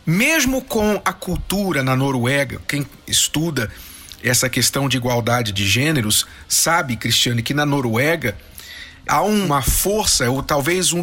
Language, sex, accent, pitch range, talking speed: Portuguese, male, Brazilian, 130-190 Hz, 135 wpm